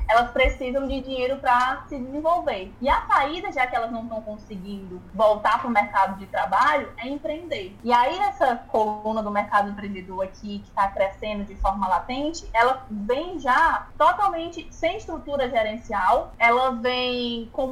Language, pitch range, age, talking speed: Portuguese, 220-280 Hz, 20-39, 165 wpm